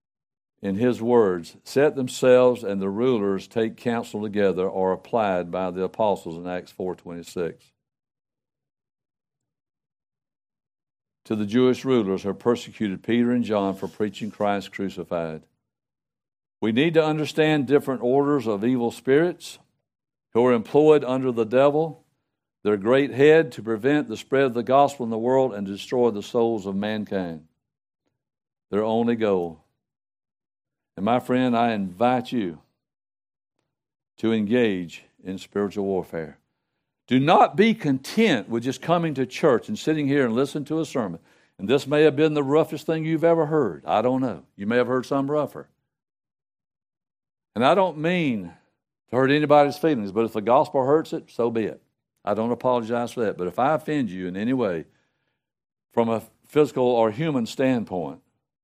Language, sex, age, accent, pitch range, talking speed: English, male, 60-79, American, 100-145 Hz, 160 wpm